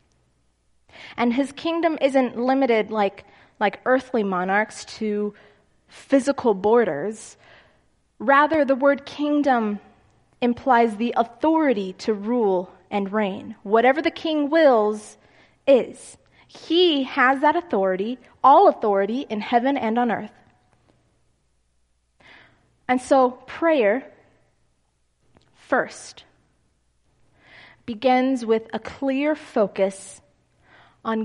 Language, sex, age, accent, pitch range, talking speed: English, female, 20-39, American, 200-265 Hz, 95 wpm